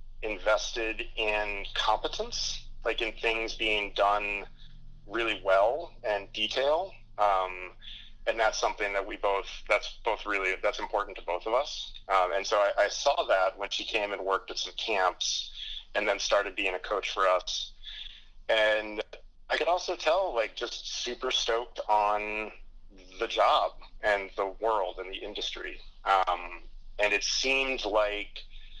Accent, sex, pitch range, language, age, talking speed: American, male, 95-115 Hz, English, 30-49, 150 wpm